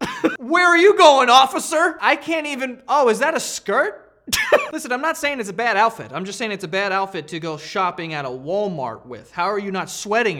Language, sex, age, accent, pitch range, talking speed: English, male, 30-49, American, 180-265 Hz, 230 wpm